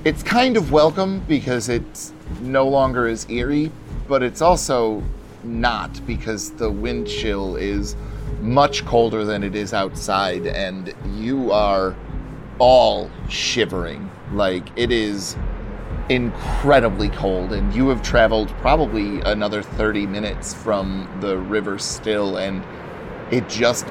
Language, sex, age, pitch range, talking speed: English, male, 30-49, 95-120 Hz, 125 wpm